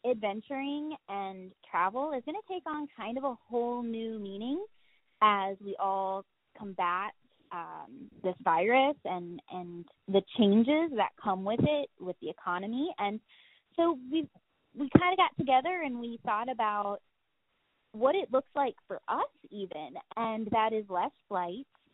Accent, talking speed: American, 155 wpm